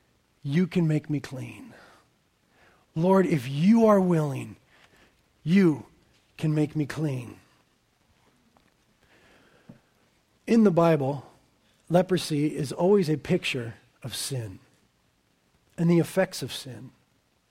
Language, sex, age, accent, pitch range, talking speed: English, male, 40-59, American, 145-200 Hz, 105 wpm